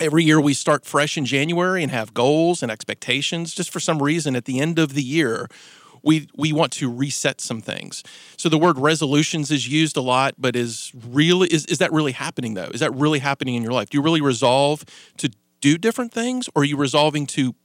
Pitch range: 130-160 Hz